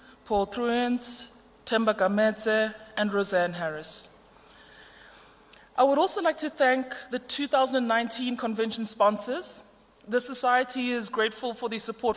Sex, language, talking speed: female, English, 120 wpm